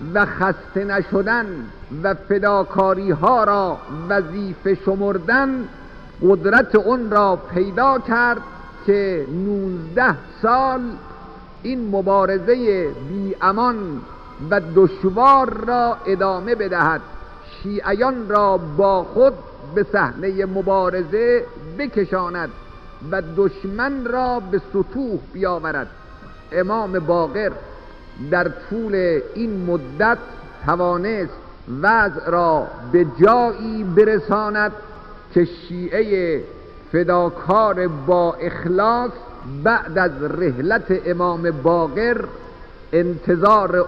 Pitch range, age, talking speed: 175-215 Hz, 50-69, 85 wpm